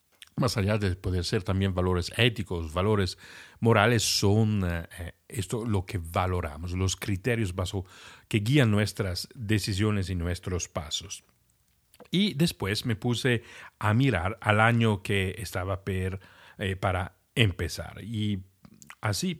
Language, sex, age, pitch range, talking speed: Spanish, male, 50-69, 95-115 Hz, 130 wpm